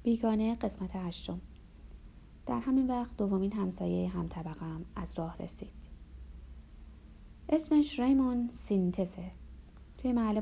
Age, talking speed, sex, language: 30-49, 110 wpm, female, Persian